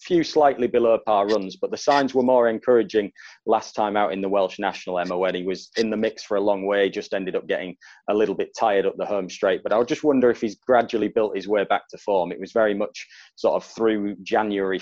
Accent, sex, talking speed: British, male, 250 wpm